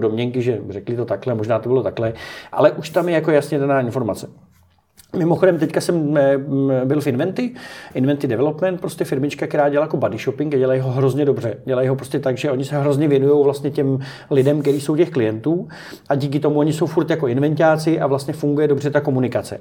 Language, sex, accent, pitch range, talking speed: Czech, male, native, 130-170 Hz, 205 wpm